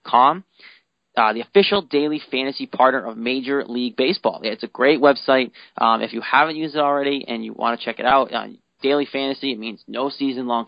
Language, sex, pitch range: English, male, 115-135 Hz